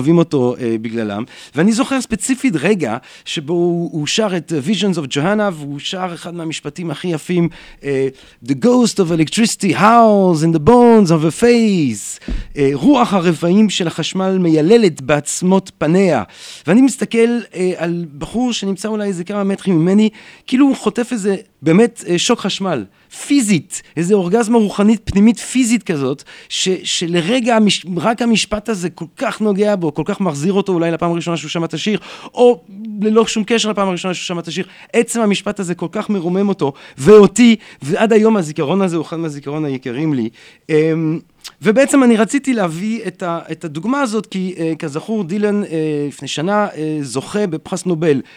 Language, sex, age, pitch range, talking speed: Hebrew, male, 40-59, 155-210 Hz, 155 wpm